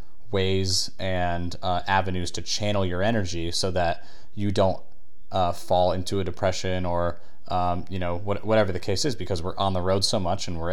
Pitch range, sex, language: 90-100 Hz, male, English